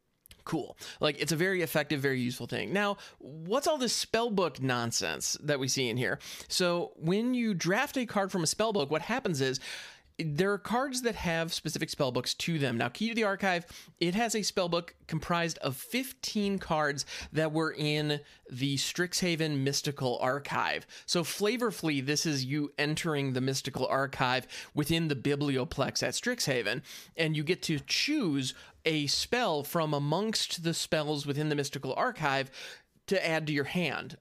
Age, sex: 30-49, male